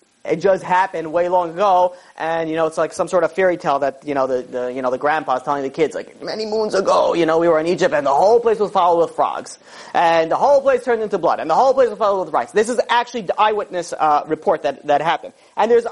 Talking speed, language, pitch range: 275 wpm, English, 160-220 Hz